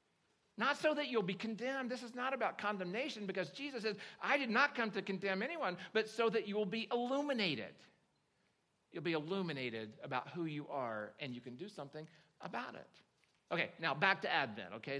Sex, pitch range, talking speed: male, 145-190 Hz, 190 wpm